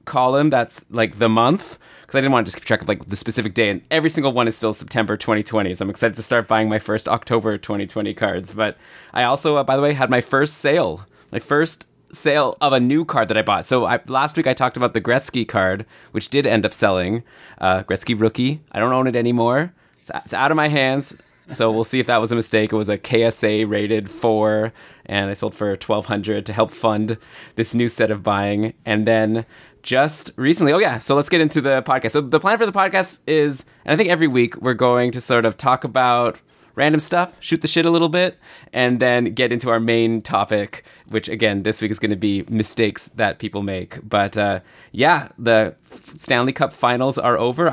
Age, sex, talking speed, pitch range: 20-39, male, 230 wpm, 110-130 Hz